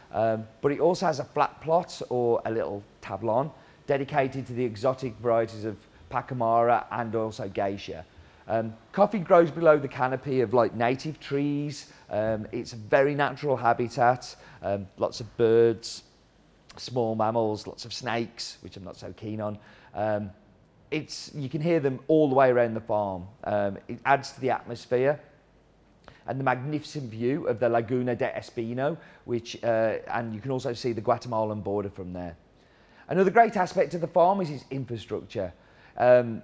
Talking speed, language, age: 170 wpm, English, 40-59